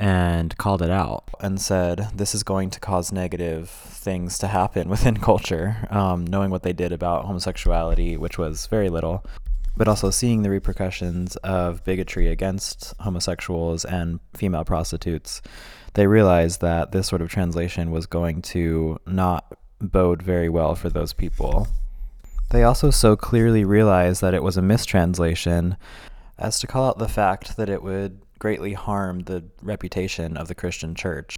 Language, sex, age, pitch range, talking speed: English, male, 20-39, 85-100 Hz, 160 wpm